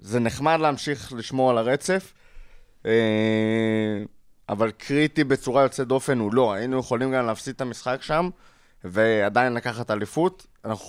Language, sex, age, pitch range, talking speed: Hebrew, male, 20-39, 110-130 Hz, 130 wpm